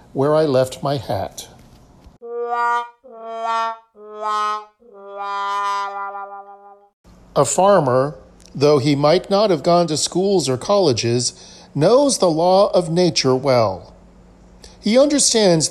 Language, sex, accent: English, male, American